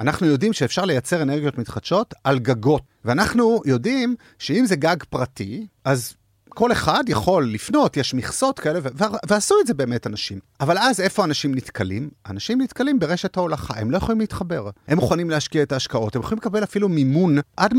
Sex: male